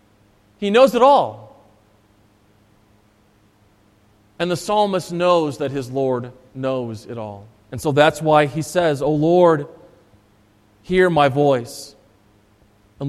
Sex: male